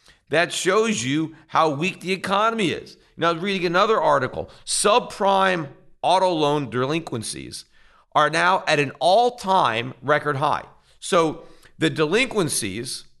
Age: 50-69